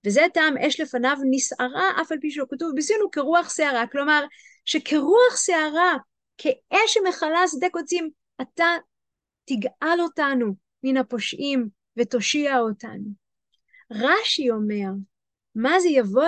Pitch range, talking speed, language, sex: 265-345 Hz, 120 wpm, Hebrew, female